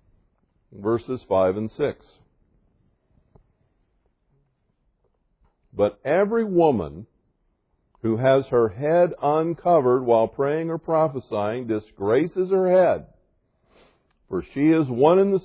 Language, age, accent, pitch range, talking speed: English, 50-69, American, 105-160 Hz, 95 wpm